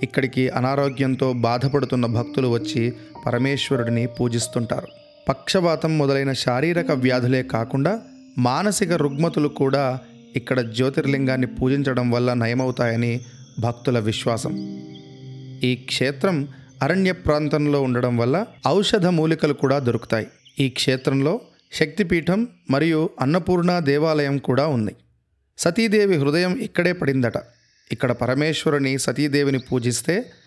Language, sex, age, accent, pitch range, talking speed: Telugu, male, 30-49, native, 125-155 Hz, 95 wpm